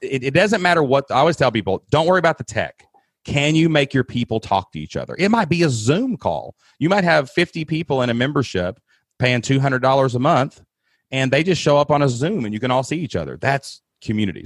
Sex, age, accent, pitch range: male, 30-49, American, 95-135 Hz